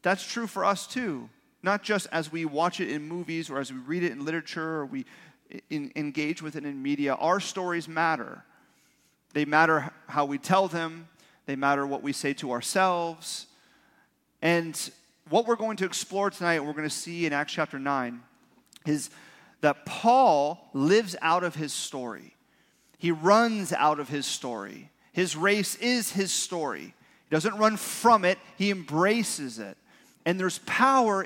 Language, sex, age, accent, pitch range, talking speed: English, male, 30-49, American, 145-190 Hz, 170 wpm